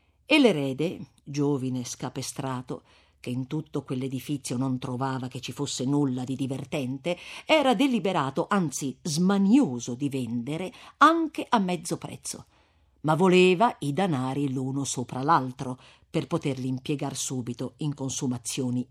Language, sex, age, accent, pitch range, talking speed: Italian, female, 50-69, native, 130-180 Hz, 125 wpm